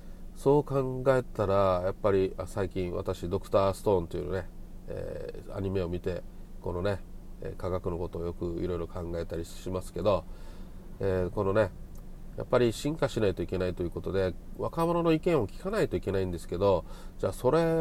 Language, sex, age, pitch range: Japanese, male, 40-59, 90-135 Hz